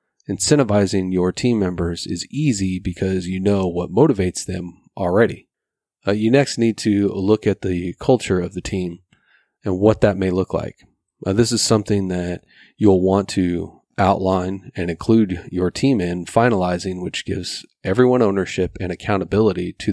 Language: English